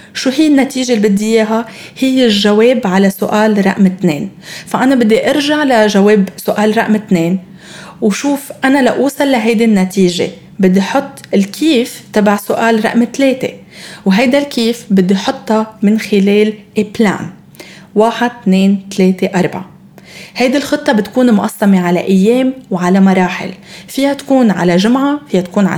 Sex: female